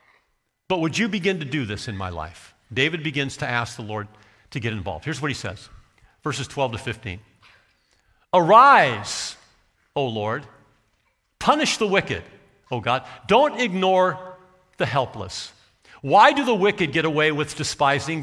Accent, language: American, English